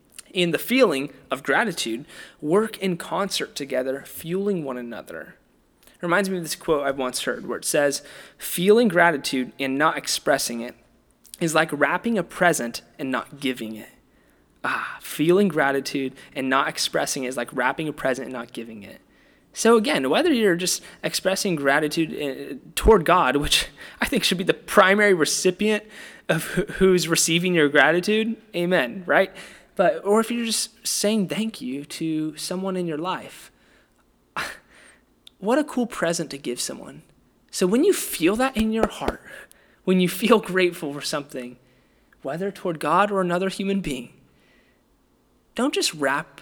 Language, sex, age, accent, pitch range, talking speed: English, male, 20-39, American, 140-200 Hz, 160 wpm